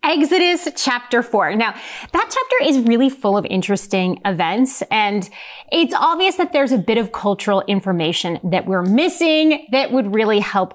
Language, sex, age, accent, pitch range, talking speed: English, female, 30-49, American, 195-275 Hz, 160 wpm